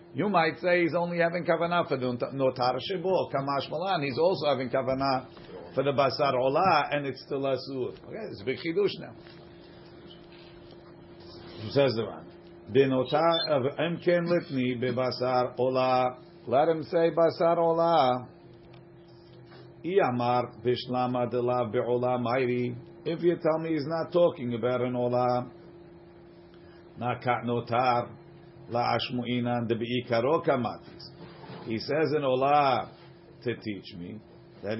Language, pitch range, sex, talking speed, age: English, 120-160 Hz, male, 100 wpm, 50-69